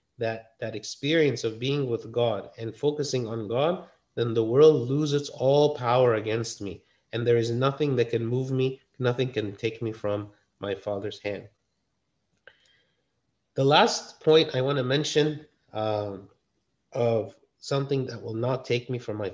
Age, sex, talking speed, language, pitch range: 30-49, male, 160 wpm, English, 115-140 Hz